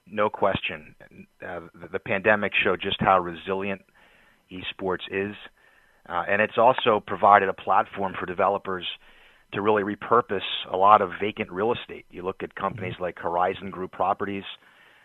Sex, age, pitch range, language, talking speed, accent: male, 30-49, 95-105 Hz, English, 150 wpm, American